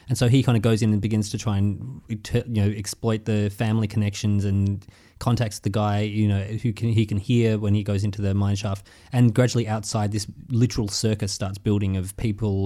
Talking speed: 220 wpm